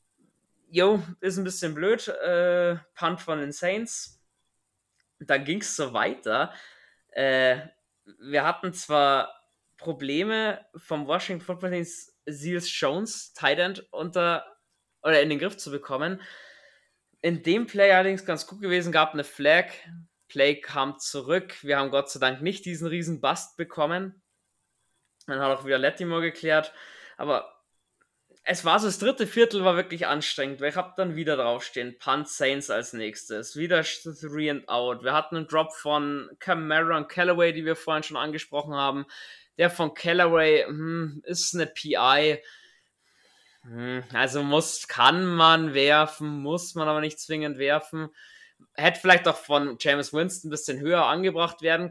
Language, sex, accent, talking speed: German, male, German, 150 wpm